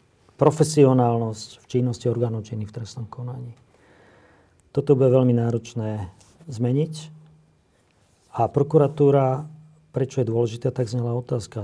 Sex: male